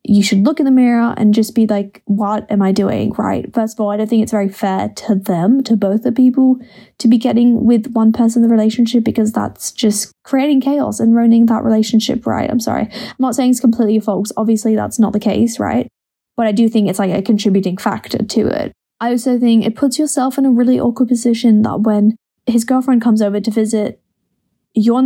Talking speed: 230 wpm